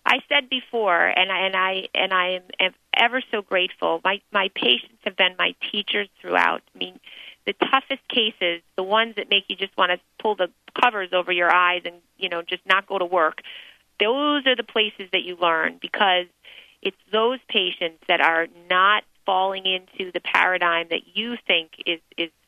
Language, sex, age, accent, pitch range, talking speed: English, female, 30-49, American, 175-200 Hz, 190 wpm